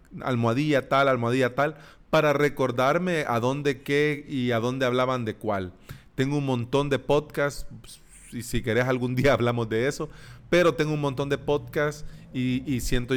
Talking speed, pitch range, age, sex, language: 170 wpm, 125-160 Hz, 30-49, male, Spanish